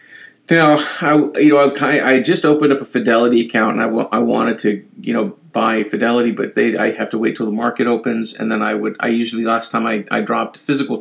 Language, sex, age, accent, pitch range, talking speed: English, male, 40-59, American, 110-140 Hz, 240 wpm